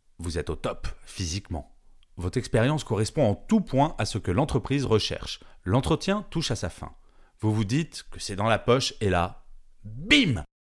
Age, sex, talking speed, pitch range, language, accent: 30-49, male, 180 wpm, 95-140 Hz, French, French